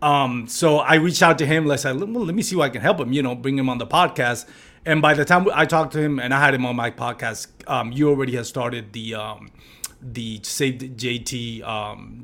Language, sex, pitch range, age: English, male, 120-150 Hz, 30-49